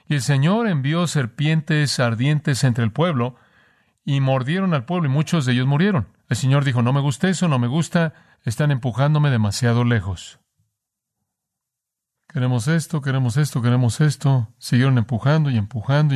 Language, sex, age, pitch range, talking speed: Spanish, male, 40-59, 125-160 Hz, 155 wpm